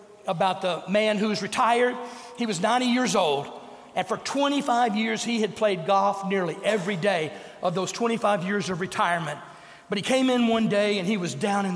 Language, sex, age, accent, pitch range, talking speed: English, male, 40-59, American, 210-255 Hz, 200 wpm